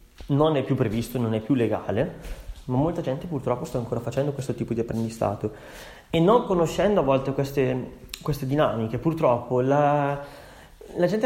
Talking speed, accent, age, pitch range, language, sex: 165 wpm, native, 30-49, 125-170 Hz, Italian, male